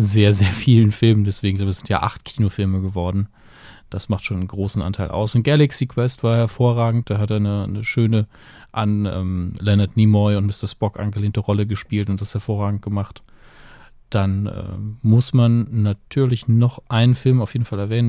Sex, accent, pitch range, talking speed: male, German, 105-125 Hz, 175 wpm